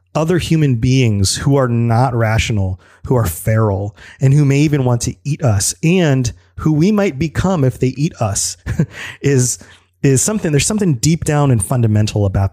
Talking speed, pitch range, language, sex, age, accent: 175 wpm, 105-140 Hz, English, male, 30-49, American